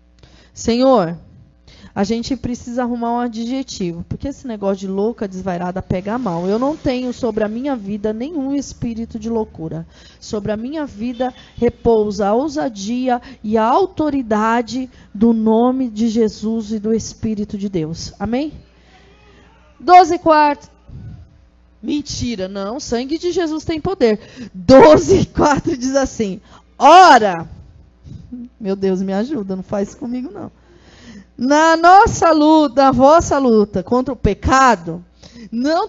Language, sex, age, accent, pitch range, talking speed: Portuguese, female, 20-39, Brazilian, 205-290 Hz, 135 wpm